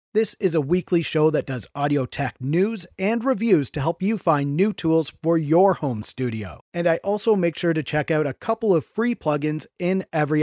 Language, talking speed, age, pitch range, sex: English, 215 wpm, 30-49, 145-190 Hz, male